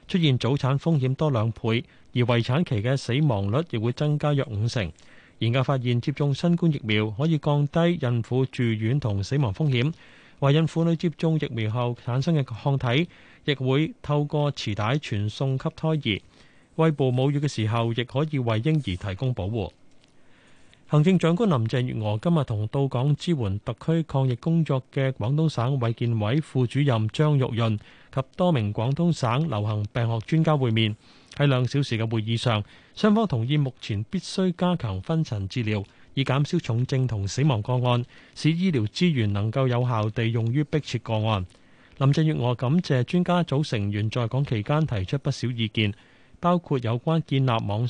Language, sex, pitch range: Chinese, male, 115-150 Hz